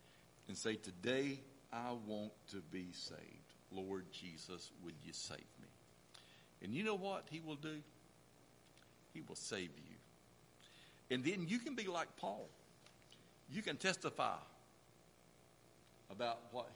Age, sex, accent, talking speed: 60-79, male, American, 135 wpm